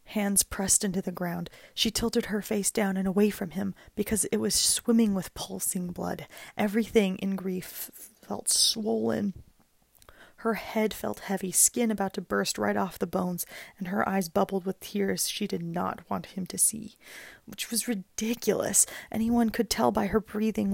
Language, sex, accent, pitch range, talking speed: English, female, American, 195-225 Hz, 175 wpm